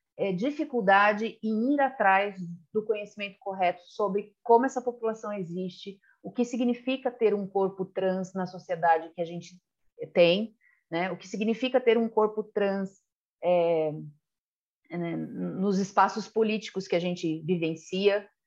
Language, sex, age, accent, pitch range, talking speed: Portuguese, female, 40-59, Brazilian, 185-230 Hz, 135 wpm